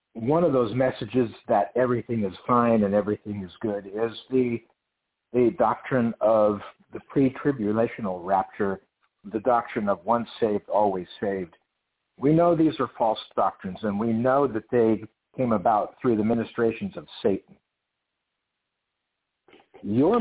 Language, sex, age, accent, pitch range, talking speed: English, male, 60-79, American, 105-135 Hz, 135 wpm